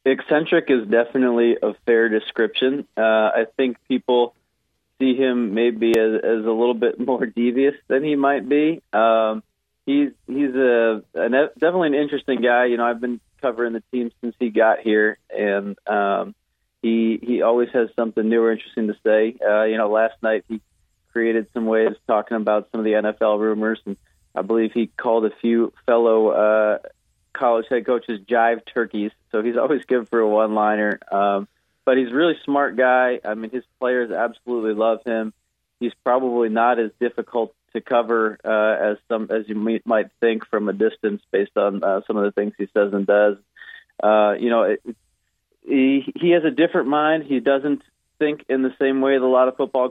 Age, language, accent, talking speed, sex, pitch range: 30-49, English, American, 185 wpm, male, 110-130 Hz